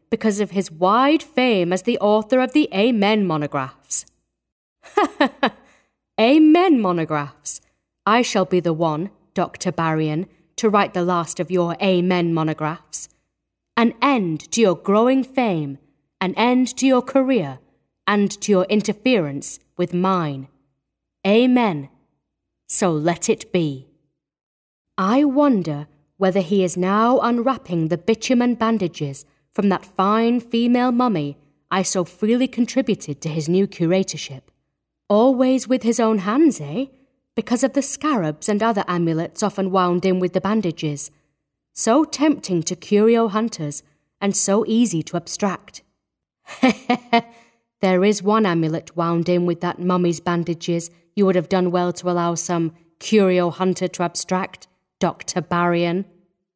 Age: 40-59